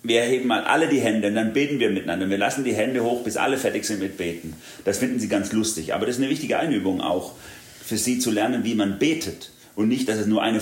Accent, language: German, German